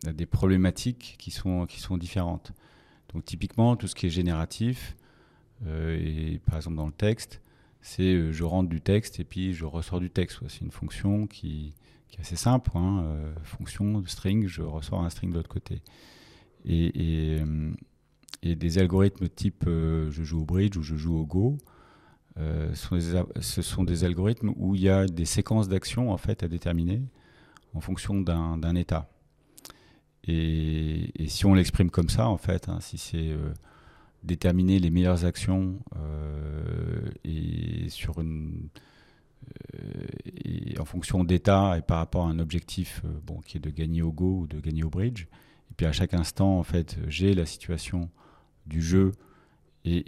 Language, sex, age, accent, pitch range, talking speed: French, male, 40-59, French, 80-95 Hz, 185 wpm